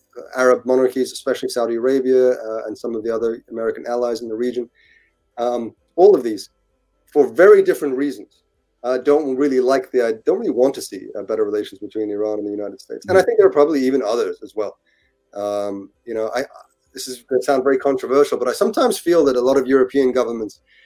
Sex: male